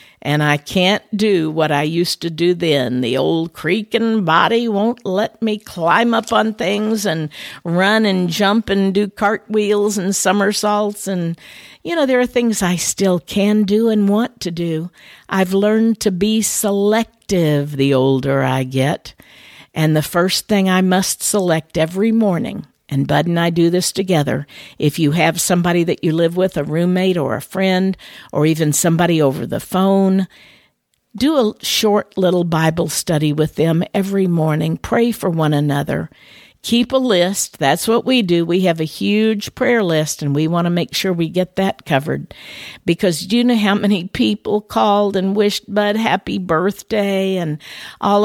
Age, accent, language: 50-69, American, English